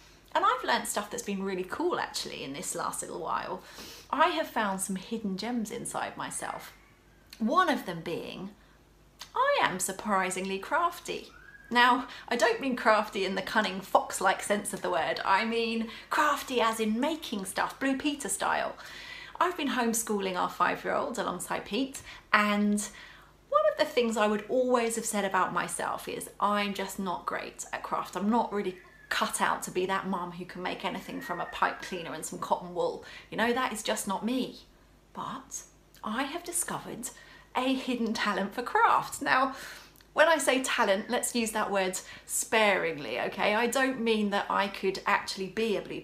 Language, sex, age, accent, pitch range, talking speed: English, female, 30-49, British, 195-260 Hz, 180 wpm